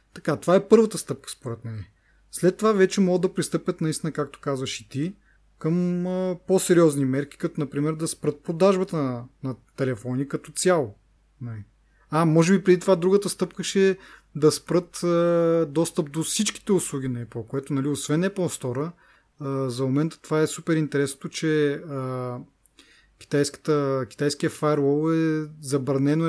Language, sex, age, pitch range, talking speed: Bulgarian, male, 30-49, 135-165 Hz, 150 wpm